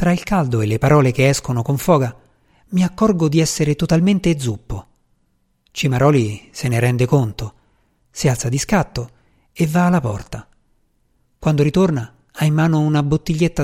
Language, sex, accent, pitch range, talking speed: Italian, male, native, 120-160 Hz, 160 wpm